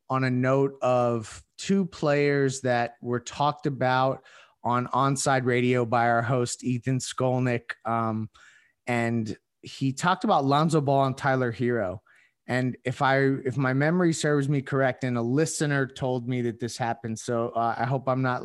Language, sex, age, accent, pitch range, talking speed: English, male, 20-39, American, 120-140 Hz, 165 wpm